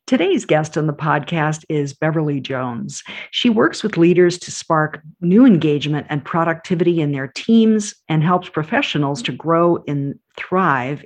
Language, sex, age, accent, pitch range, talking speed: English, female, 50-69, American, 145-190 Hz, 150 wpm